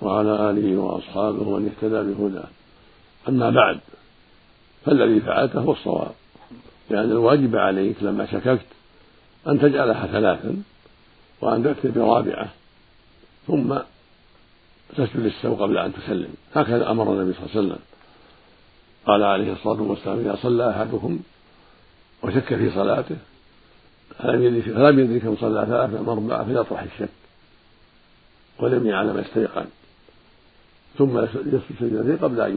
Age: 60-79